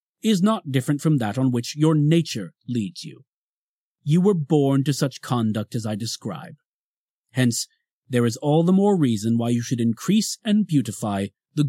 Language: English